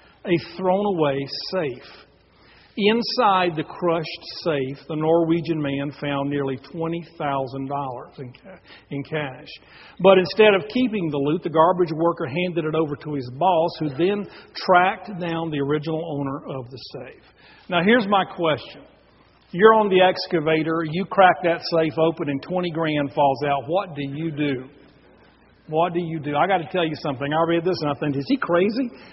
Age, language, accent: 40-59, English, American